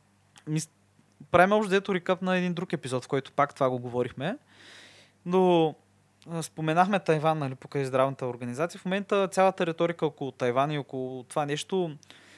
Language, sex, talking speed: Bulgarian, male, 150 wpm